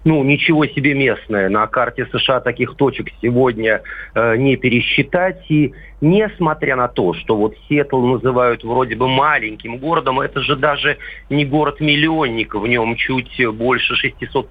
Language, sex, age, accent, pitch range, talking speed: Russian, male, 40-59, native, 120-150 Hz, 145 wpm